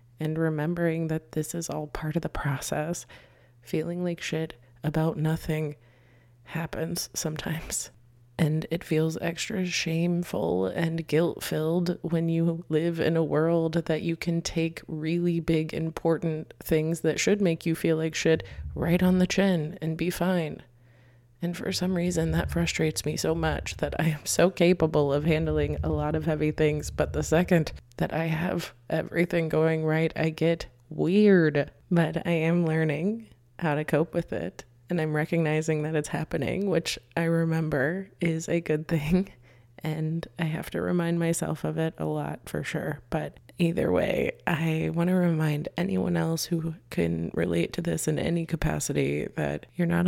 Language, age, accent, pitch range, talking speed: English, 20-39, American, 150-170 Hz, 165 wpm